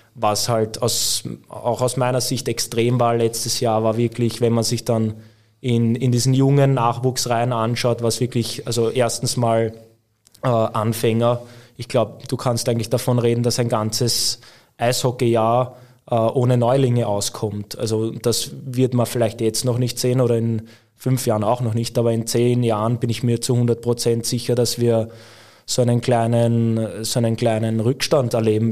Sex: male